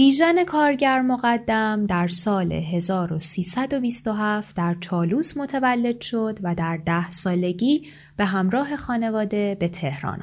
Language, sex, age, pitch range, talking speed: Persian, female, 20-39, 170-245 Hz, 110 wpm